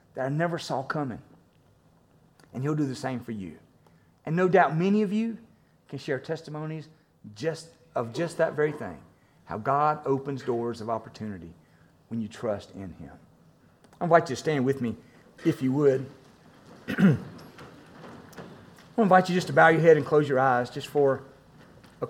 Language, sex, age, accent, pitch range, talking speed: English, male, 40-59, American, 130-170 Hz, 170 wpm